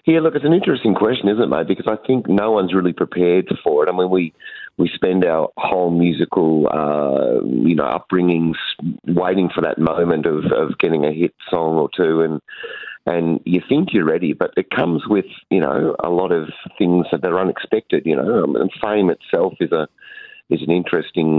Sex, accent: male, Australian